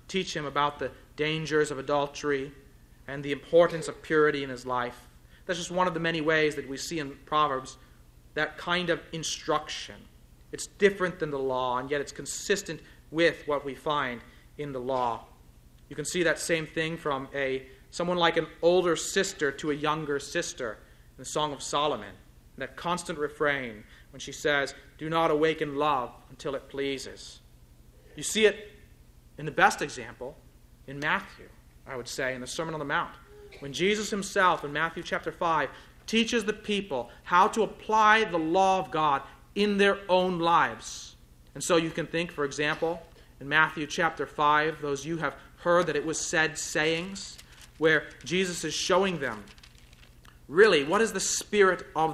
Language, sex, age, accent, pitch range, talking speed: English, male, 30-49, American, 140-170 Hz, 180 wpm